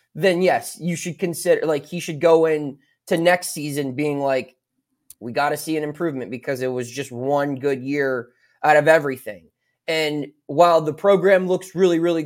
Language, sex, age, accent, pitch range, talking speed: English, male, 20-39, American, 140-165 Hz, 185 wpm